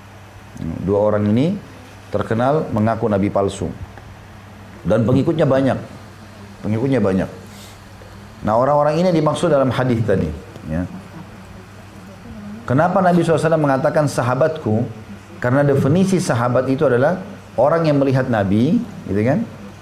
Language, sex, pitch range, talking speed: Indonesian, male, 105-140 Hz, 110 wpm